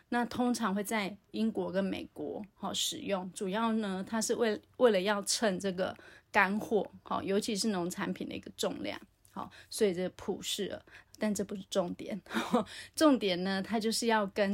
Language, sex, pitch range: Chinese, female, 190-230 Hz